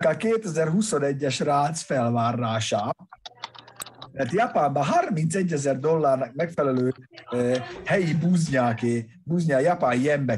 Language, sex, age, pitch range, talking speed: Hungarian, male, 30-49, 125-195 Hz, 95 wpm